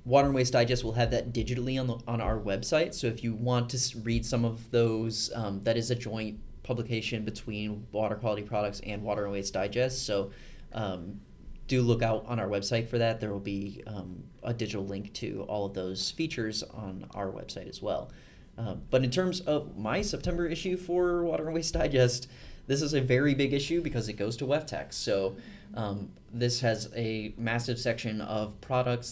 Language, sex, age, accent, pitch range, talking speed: English, male, 30-49, American, 110-130 Hz, 200 wpm